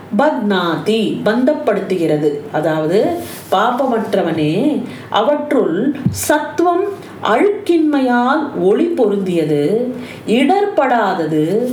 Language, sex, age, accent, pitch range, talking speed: Tamil, female, 40-59, native, 210-315 Hz, 50 wpm